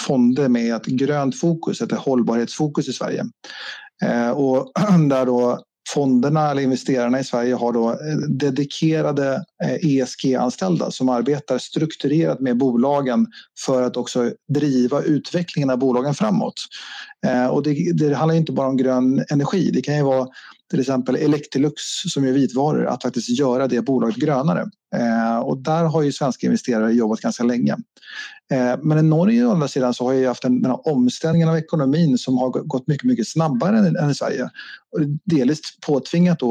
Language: English